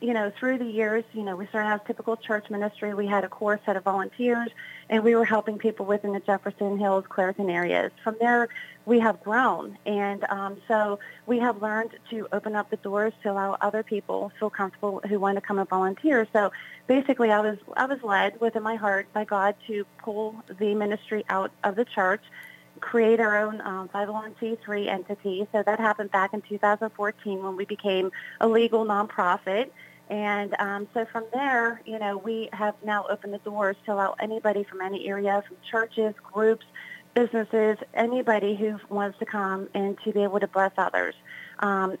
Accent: American